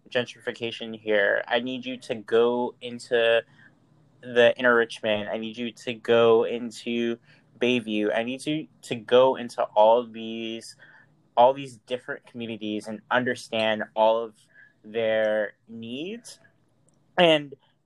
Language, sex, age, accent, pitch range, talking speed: English, male, 20-39, American, 115-130 Hz, 130 wpm